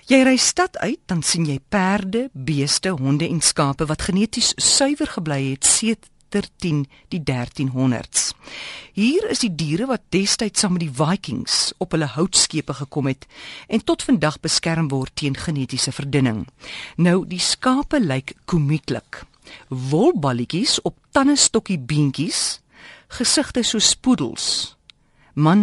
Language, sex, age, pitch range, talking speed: Dutch, female, 50-69, 140-215 Hz, 135 wpm